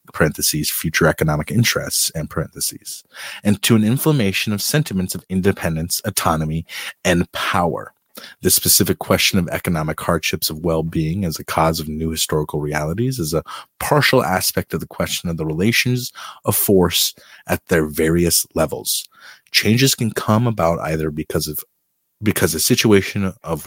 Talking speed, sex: 150 wpm, male